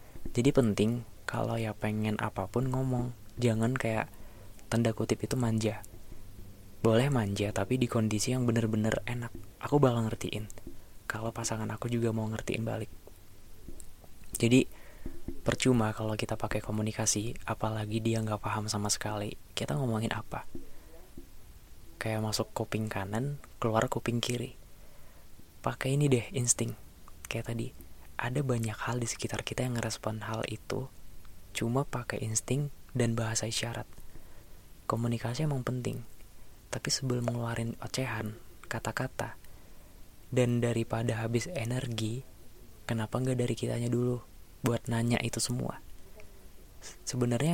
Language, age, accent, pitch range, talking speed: Indonesian, 20-39, native, 105-120 Hz, 120 wpm